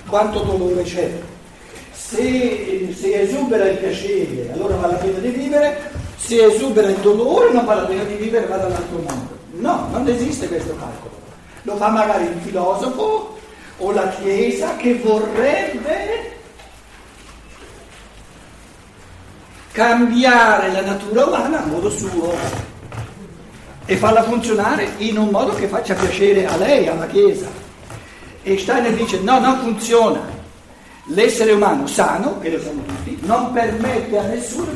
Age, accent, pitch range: 60-79, native, 170-235 Hz